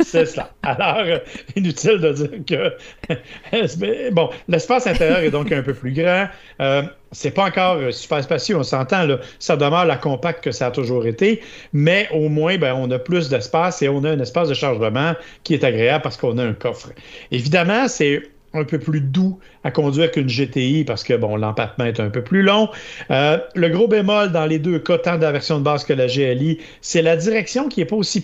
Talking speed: 210 wpm